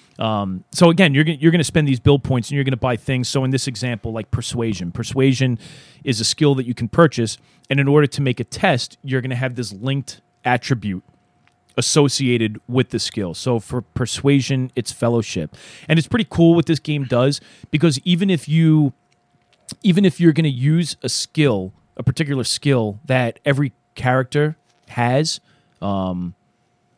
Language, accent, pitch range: English, American, 110-140 Hz